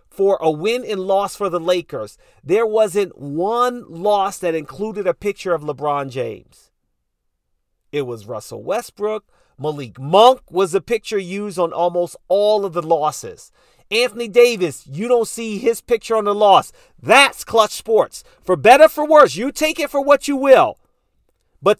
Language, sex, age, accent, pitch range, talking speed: English, male, 40-59, American, 175-250 Hz, 170 wpm